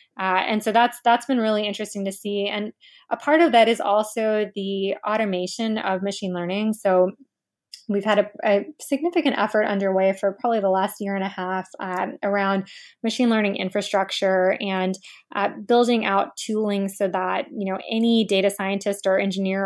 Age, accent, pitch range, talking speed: 20-39, American, 195-225 Hz, 175 wpm